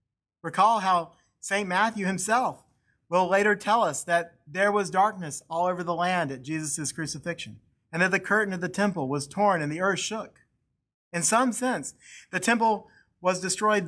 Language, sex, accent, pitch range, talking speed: English, male, American, 145-190 Hz, 175 wpm